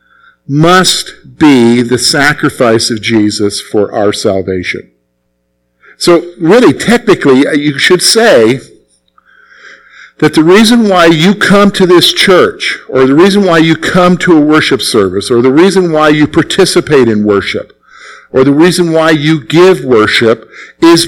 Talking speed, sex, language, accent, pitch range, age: 140 wpm, male, English, American, 125-180 Hz, 50-69